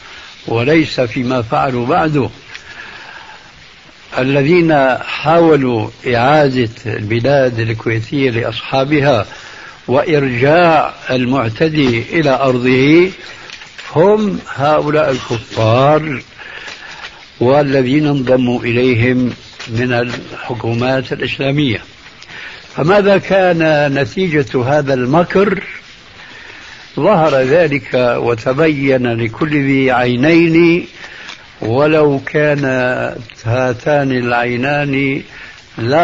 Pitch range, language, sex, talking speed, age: 125-155 Hz, Arabic, male, 65 wpm, 60-79